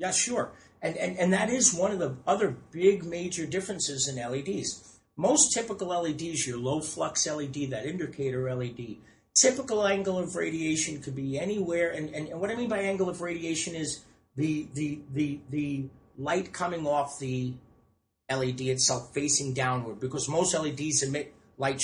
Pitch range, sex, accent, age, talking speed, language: 130-165 Hz, male, American, 50-69, 170 wpm, English